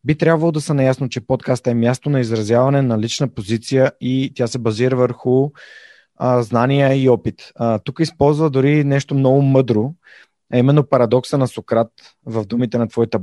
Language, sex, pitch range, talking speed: Bulgarian, male, 115-140 Hz, 175 wpm